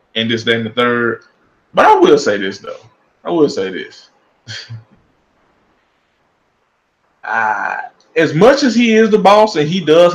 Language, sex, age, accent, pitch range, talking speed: English, male, 20-39, American, 140-230 Hz, 160 wpm